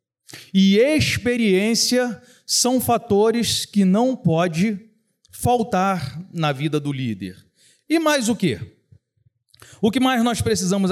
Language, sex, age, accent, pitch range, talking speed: Portuguese, male, 40-59, Brazilian, 150-250 Hz, 115 wpm